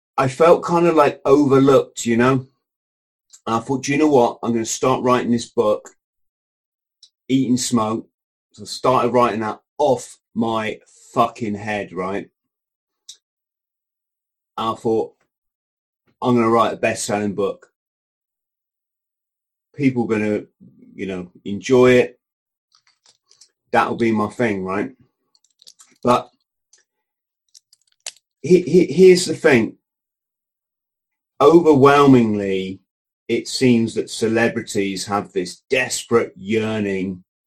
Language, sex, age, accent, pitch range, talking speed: English, male, 30-49, British, 110-130 Hz, 115 wpm